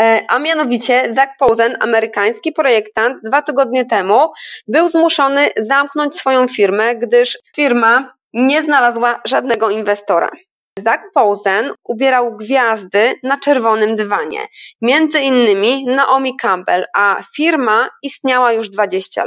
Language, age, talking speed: Polish, 20-39, 110 wpm